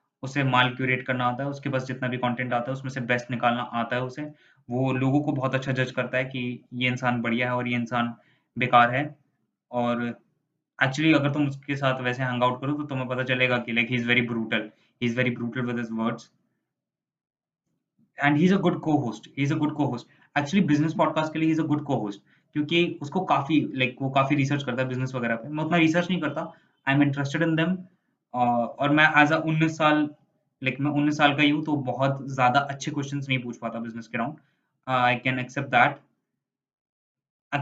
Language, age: Hindi, 20-39